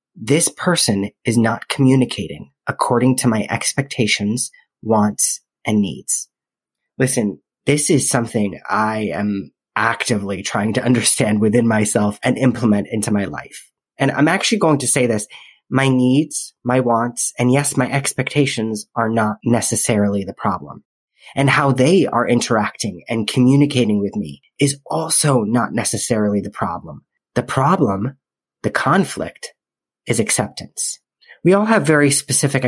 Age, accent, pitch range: 30-49, American, 110-135 Hz